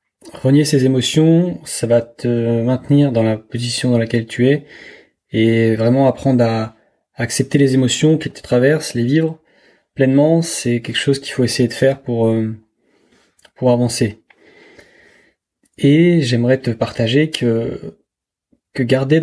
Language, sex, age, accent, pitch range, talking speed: French, male, 20-39, French, 115-140 Hz, 145 wpm